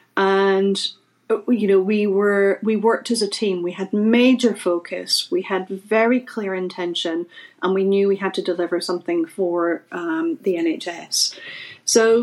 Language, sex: English, female